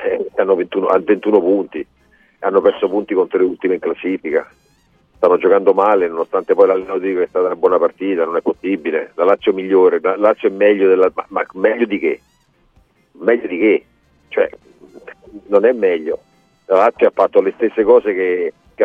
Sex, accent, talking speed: male, native, 180 wpm